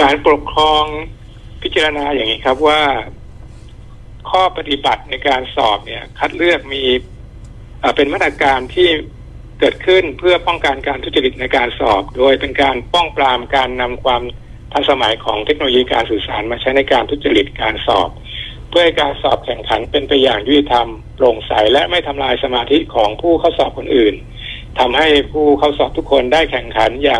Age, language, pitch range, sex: 60-79, Thai, 120-155 Hz, male